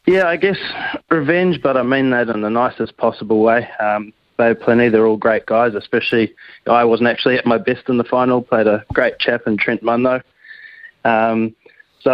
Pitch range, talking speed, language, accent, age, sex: 110-120 Hz, 215 wpm, English, Australian, 20-39, male